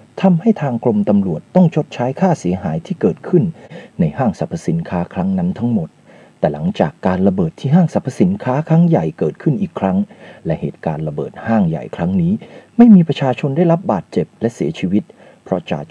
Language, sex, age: Thai, male, 30-49